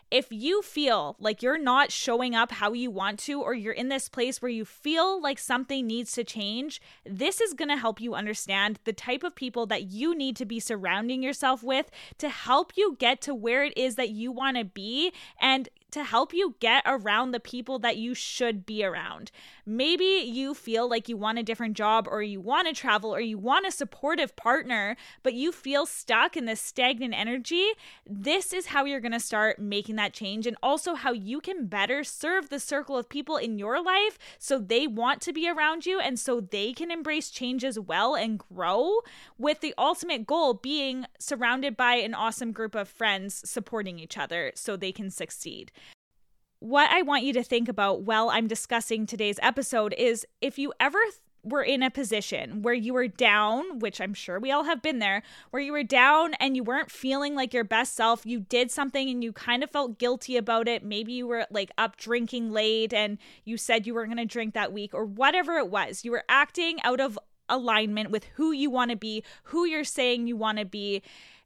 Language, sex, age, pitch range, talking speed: English, female, 10-29, 220-280 Hz, 210 wpm